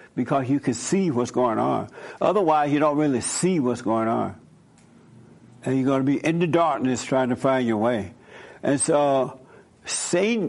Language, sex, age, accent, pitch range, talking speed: English, male, 60-79, American, 130-170 Hz, 175 wpm